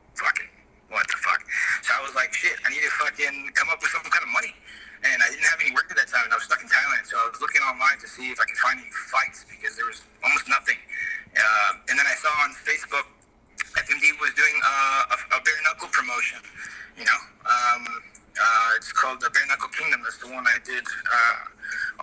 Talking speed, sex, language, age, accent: 225 wpm, male, English, 30-49, American